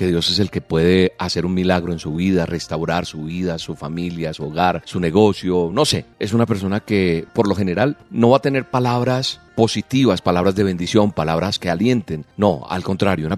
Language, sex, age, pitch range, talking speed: Spanish, male, 40-59, 85-110 Hz, 205 wpm